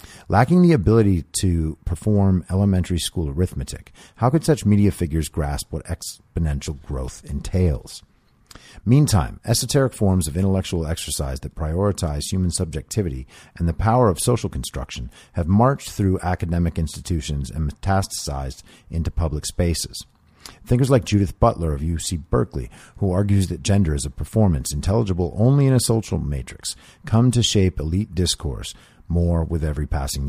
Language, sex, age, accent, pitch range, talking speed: English, male, 40-59, American, 80-105 Hz, 145 wpm